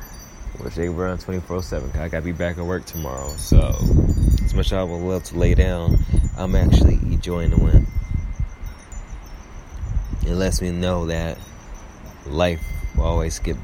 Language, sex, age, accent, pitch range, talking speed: English, male, 20-39, American, 80-95 Hz, 165 wpm